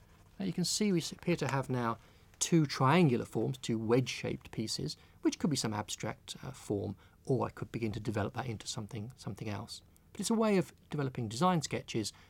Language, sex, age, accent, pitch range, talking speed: English, male, 40-59, British, 95-145 Hz, 200 wpm